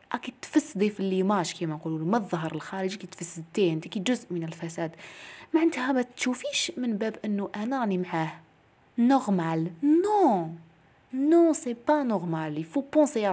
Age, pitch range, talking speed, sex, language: 20-39, 175-250 Hz, 160 wpm, female, Arabic